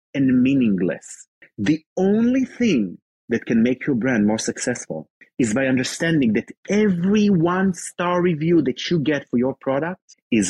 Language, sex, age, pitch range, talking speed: English, male, 30-49, 110-180 Hz, 150 wpm